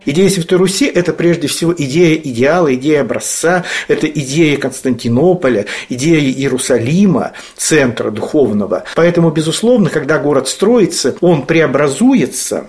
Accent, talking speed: native, 115 wpm